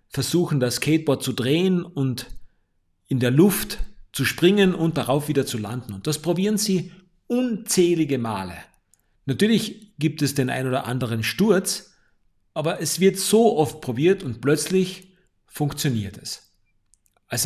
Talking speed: 140 wpm